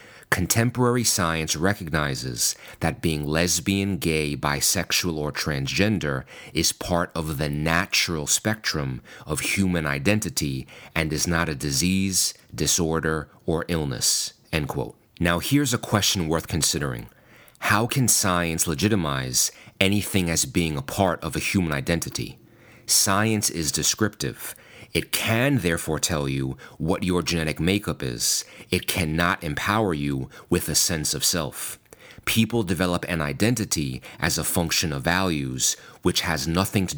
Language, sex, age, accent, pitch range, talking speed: English, male, 40-59, American, 75-100 Hz, 135 wpm